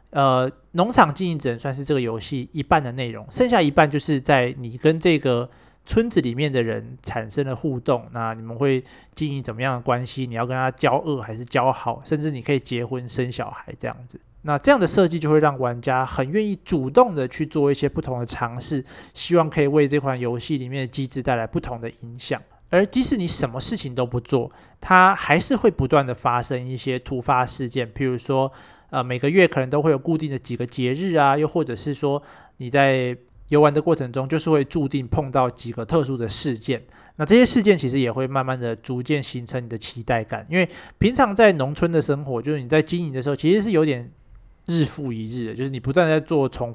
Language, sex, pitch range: Chinese, male, 125-155 Hz